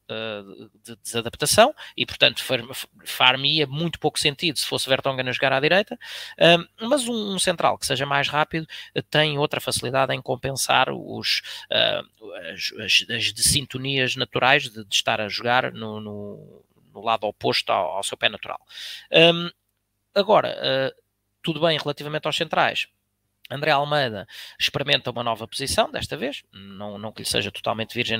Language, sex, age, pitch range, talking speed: Portuguese, male, 20-39, 115-150 Hz, 155 wpm